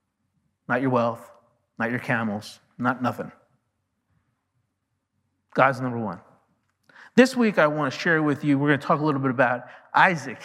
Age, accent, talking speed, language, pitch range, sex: 50-69, American, 160 wpm, English, 120-145 Hz, male